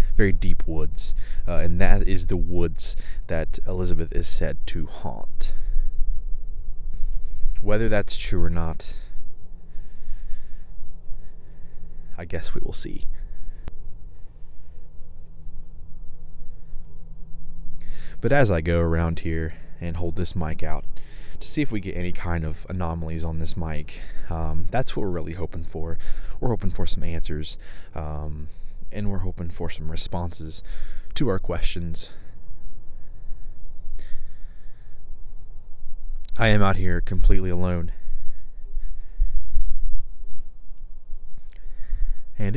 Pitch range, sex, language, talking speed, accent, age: 80-95 Hz, male, English, 110 wpm, American, 20-39